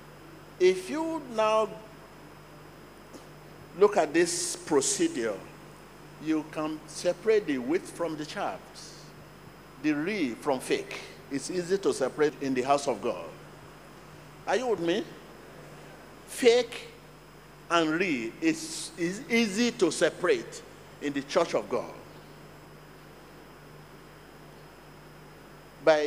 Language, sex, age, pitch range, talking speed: English, male, 50-69, 150-240 Hz, 105 wpm